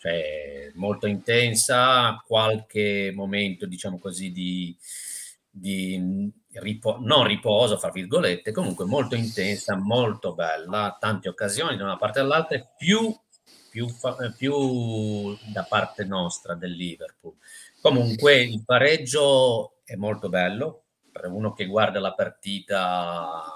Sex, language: male, Italian